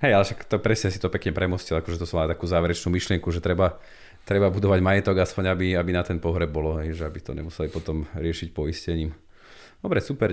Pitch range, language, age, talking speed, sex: 85-105 Hz, Slovak, 30-49, 205 wpm, male